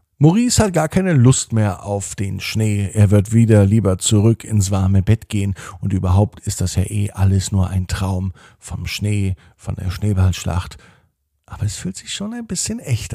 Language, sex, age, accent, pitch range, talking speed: German, male, 50-69, German, 95-110 Hz, 185 wpm